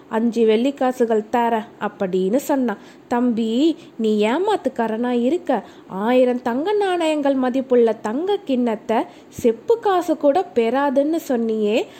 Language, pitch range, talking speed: Tamil, 230-325 Hz, 100 wpm